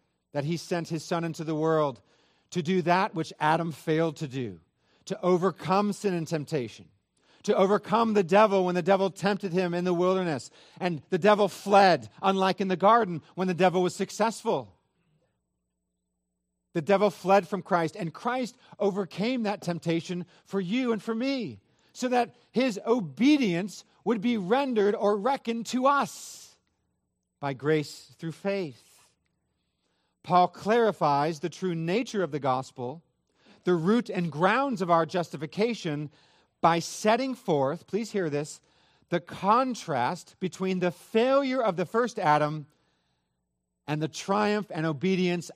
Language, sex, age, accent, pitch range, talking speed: English, male, 40-59, American, 150-200 Hz, 145 wpm